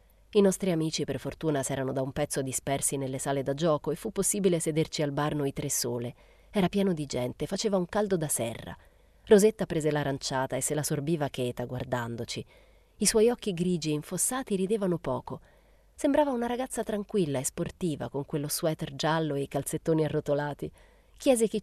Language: Italian